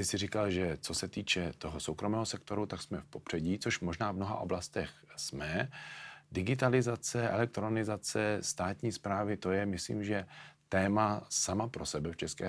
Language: Czech